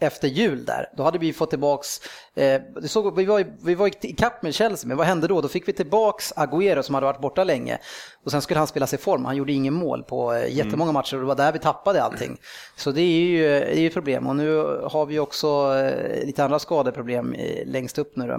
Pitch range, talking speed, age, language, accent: 135-180 Hz, 245 wpm, 30-49, Swedish, Norwegian